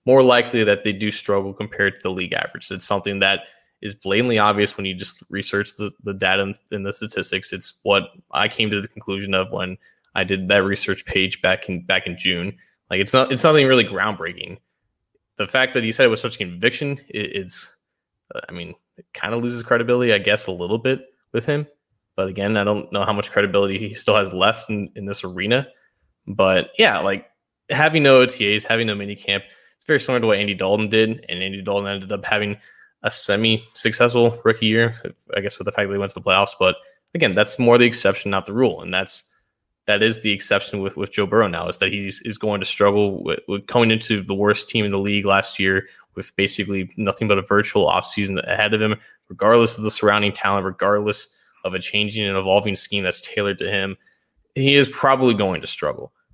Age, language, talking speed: 20-39, English, 215 wpm